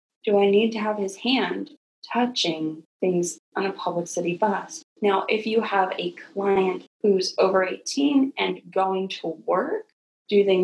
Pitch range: 175-230 Hz